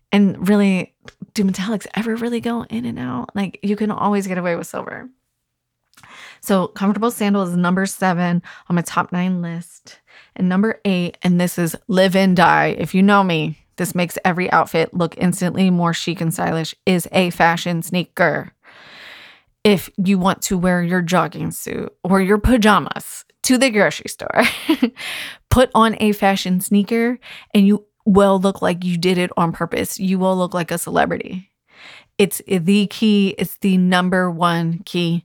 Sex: female